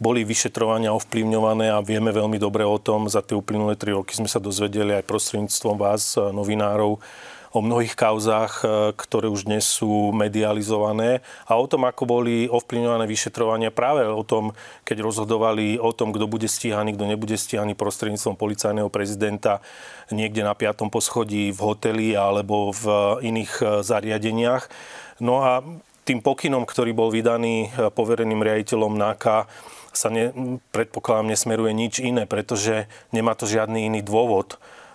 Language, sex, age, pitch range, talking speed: Slovak, male, 30-49, 105-115 Hz, 145 wpm